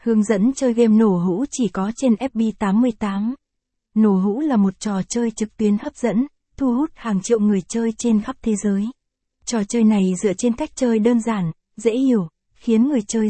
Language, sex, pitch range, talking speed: Vietnamese, female, 205-240 Hz, 200 wpm